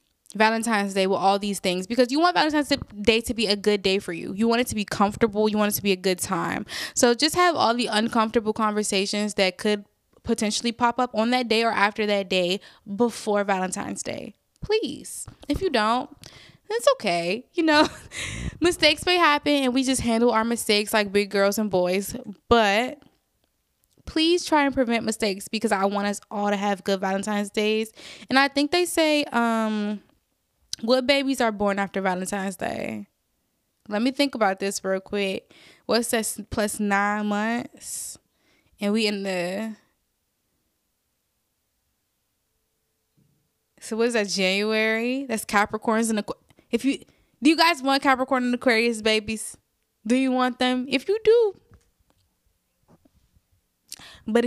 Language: English